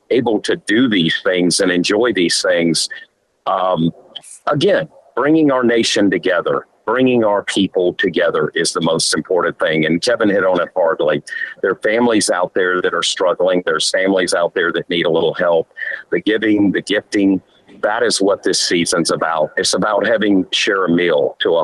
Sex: male